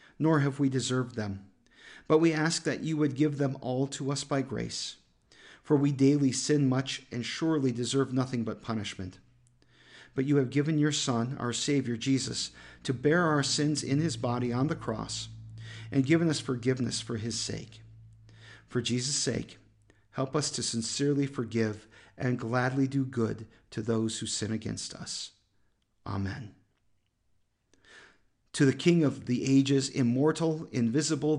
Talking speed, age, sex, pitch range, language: 155 wpm, 40-59, male, 115-160 Hz, English